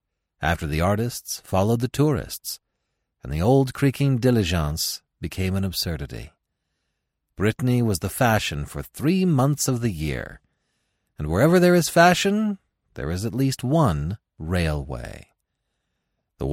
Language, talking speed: English, 130 wpm